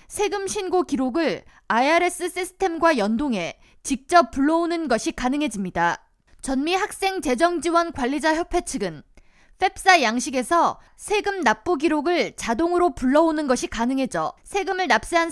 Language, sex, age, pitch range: Korean, female, 20-39, 260-355 Hz